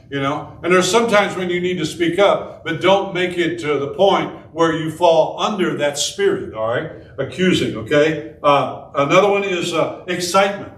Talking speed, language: 190 wpm, English